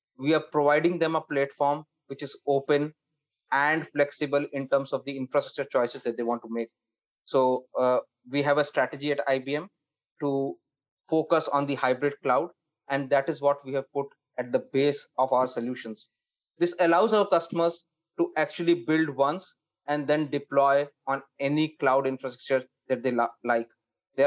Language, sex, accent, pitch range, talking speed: English, male, Indian, 130-155 Hz, 170 wpm